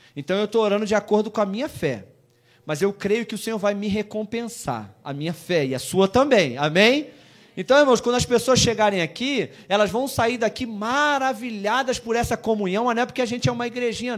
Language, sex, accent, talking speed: Portuguese, male, Brazilian, 210 wpm